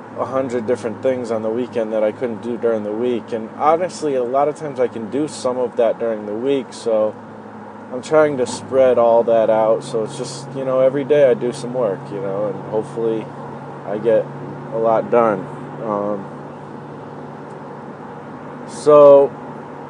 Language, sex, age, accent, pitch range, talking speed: English, male, 20-39, American, 110-140 Hz, 180 wpm